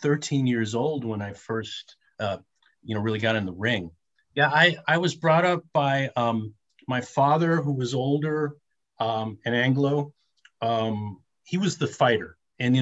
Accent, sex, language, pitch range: American, male, English, 115-155 Hz